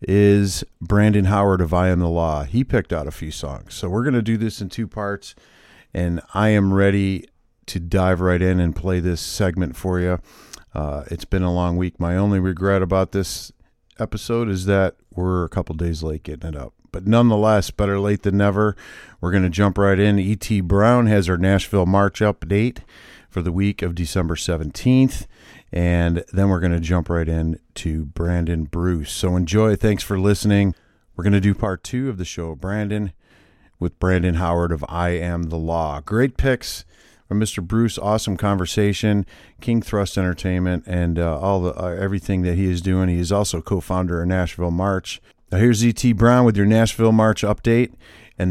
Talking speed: 195 wpm